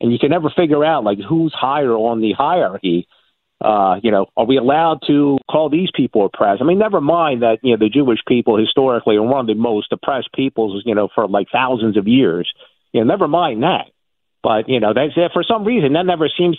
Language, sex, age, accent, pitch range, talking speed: English, male, 50-69, American, 110-145 Hz, 230 wpm